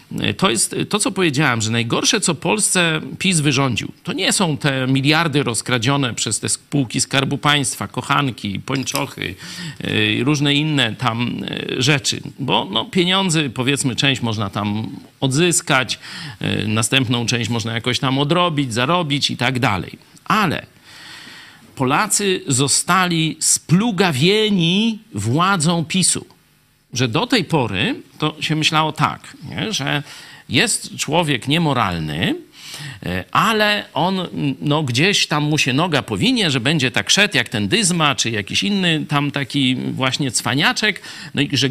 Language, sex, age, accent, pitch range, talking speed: Polish, male, 50-69, native, 125-170 Hz, 125 wpm